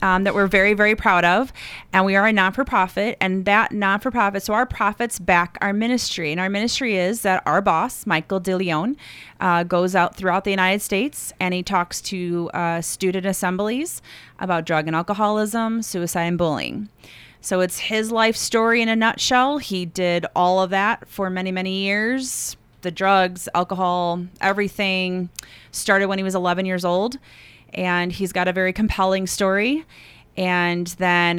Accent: American